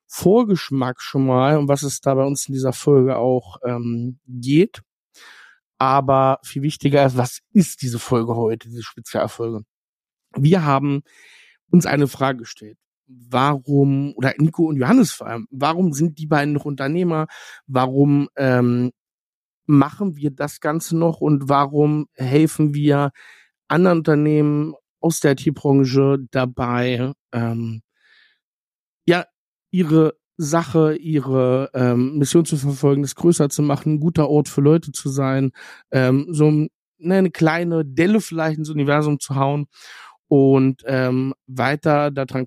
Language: German